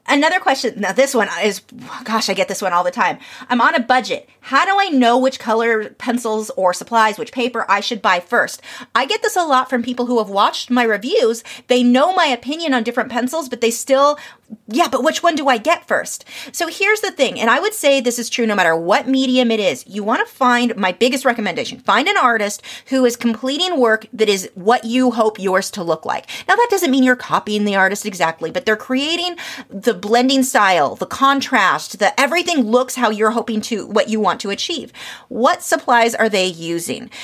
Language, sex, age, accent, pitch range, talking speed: English, female, 30-49, American, 220-275 Hz, 220 wpm